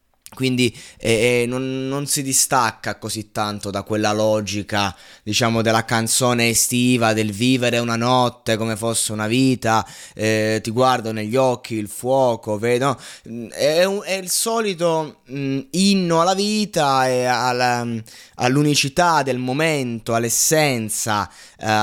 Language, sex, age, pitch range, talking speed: Italian, male, 20-39, 115-145 Hz, 130 wpm